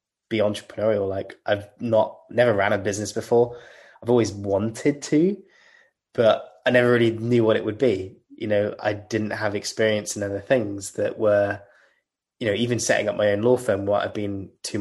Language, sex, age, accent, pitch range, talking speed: English, male, 20-39, British, 100-110 Hz, 190 wpm